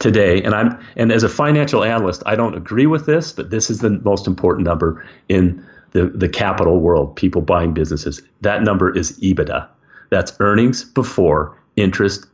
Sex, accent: male, American